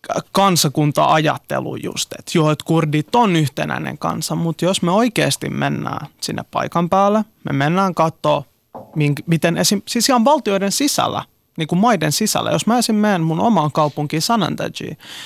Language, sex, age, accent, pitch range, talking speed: Finnish, male, 20-39, native, 150-200 Hz, 150 wpm